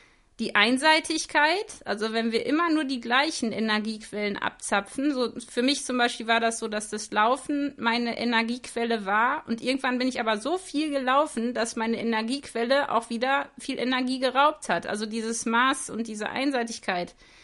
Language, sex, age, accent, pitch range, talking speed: German, female, 30-49, German, 230-280 Hz, 165 wpm